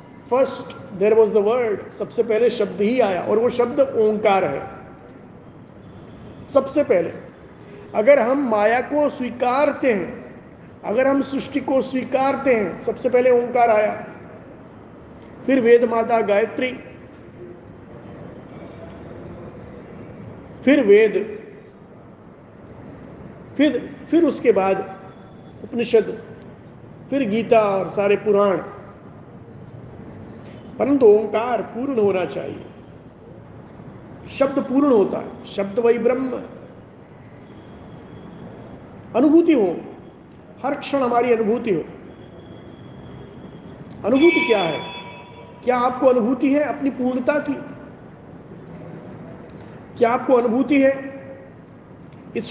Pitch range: 220-275 Hz